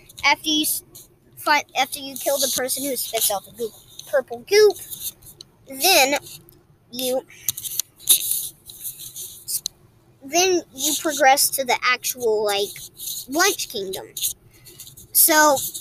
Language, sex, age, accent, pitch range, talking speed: English, male, 20-39, American, 235-300 Hz, 105 wpm